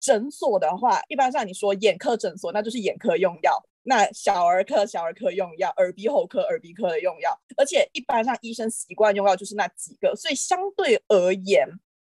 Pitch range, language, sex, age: 195-270 Hz, Chinese, female, 20-39